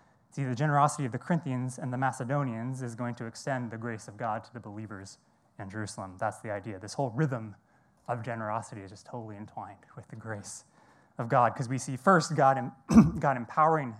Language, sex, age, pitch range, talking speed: English, male, 20-39, 110-135 Hz, 200 wpm